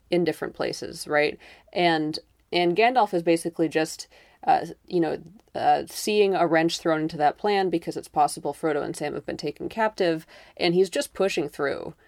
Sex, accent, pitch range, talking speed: female, American, 155-185 Hz, 180 wpm